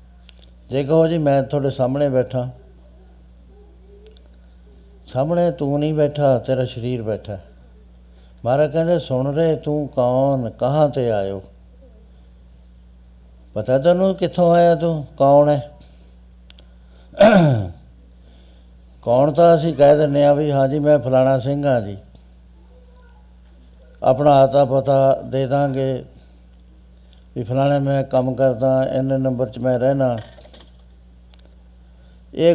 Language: Punjabi